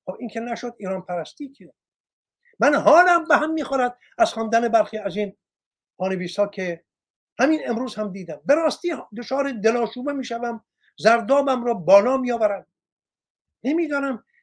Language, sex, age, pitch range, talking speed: Persian, male, 50-69, 190-275 Hz, 130 wpm